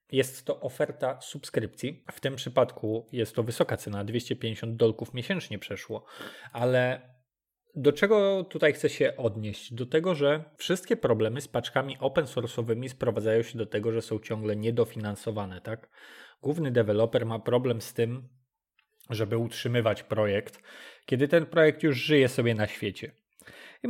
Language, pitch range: Polish, 110-135 Hz